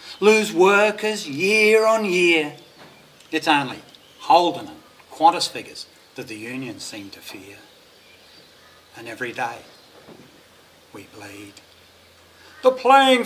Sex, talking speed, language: male, 110 wpm, English